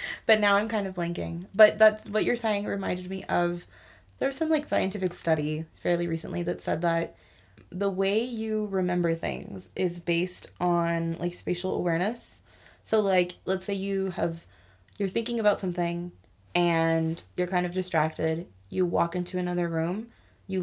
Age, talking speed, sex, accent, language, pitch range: 20-39, 165 wpm, female, American, English, 160-185 Hz